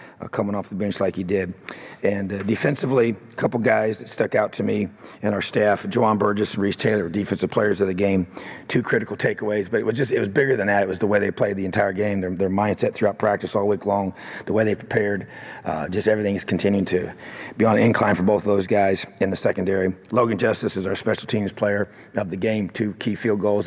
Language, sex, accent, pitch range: English, male, American, 95-110 Hz